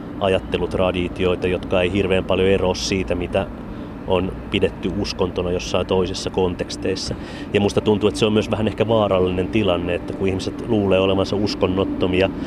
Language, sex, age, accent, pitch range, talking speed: Finnish, male, 30-49, native, 90-110 Hz, 150 wpm